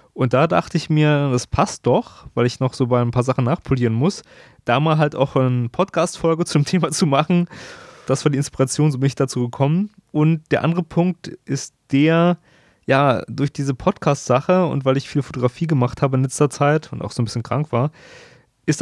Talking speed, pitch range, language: 205 wpm, 125-150 Hz, German